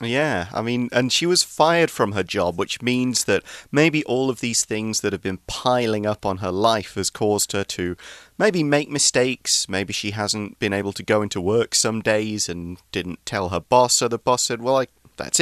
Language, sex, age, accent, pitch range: Chinese, male, 30-49, British, 105-145 Hz